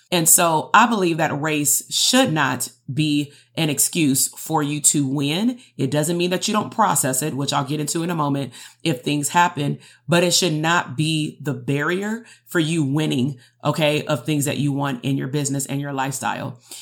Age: 30-49